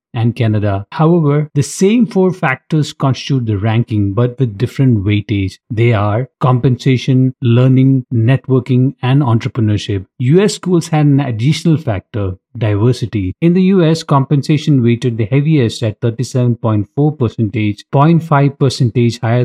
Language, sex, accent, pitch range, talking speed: English, male, Indian, 115-140 Hz, 120 wpm